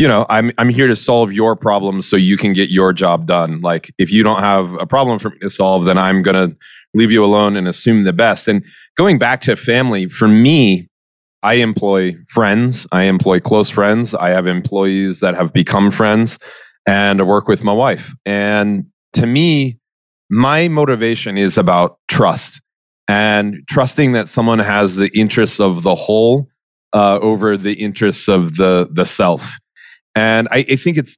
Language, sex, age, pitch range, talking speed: English, male, 30-49, 95-120 Hz, 180 wpm